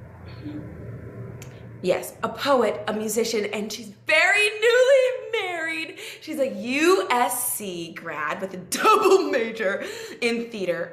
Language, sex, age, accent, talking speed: English, female, 20-39, American, 110 wpm